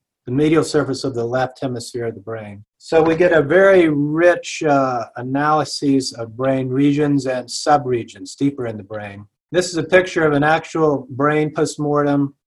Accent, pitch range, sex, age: American, 125-150 Hz, male, 50-69